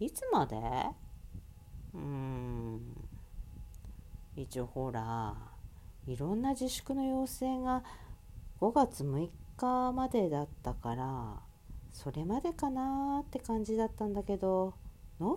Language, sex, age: Japanese, female, 40-59